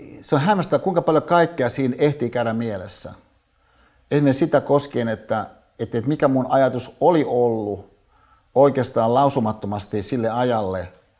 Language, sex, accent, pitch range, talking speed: Finnish, male, native, 105-135 Hz, 130 wpm